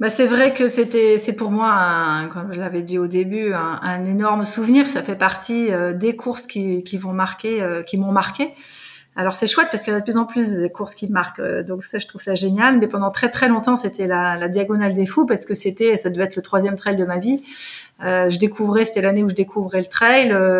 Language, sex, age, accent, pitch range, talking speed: French, female, 30-49, French, 185-225 Hz, 260 wpm